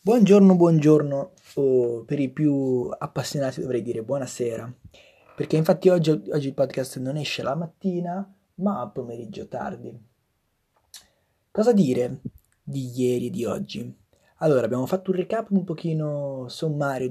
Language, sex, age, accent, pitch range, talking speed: Italian, male, 20-39, native, 125-185 Hz, 140 wpm